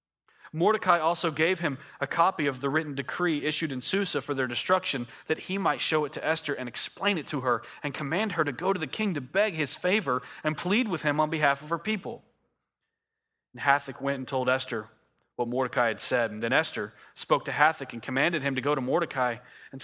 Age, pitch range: 30-49, 120-160 Hz